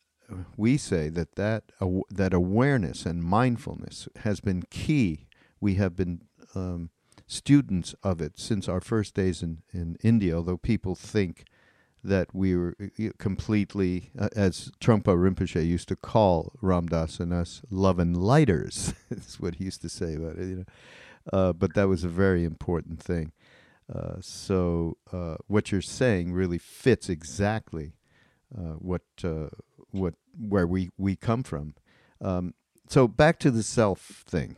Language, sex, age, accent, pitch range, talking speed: English, male, 50-69, American, 85-110 Hz, 155 wpm